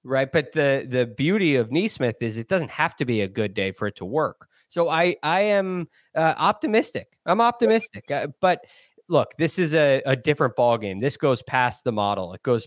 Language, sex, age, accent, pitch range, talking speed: English, male, 30-49, American, 110-140 Hz, 210 wpm